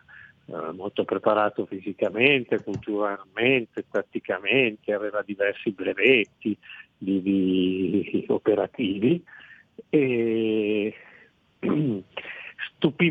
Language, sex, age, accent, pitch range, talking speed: Italian, male, 50-69, native, 100-115 Hz, 50 wpm